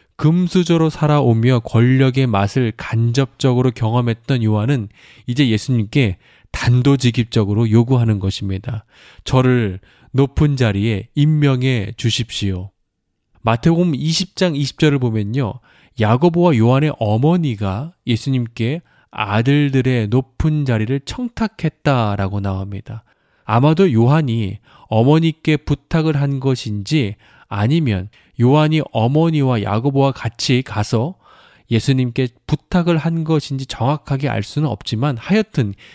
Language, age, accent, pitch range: Korean, 20-39, native, 110-145 Hz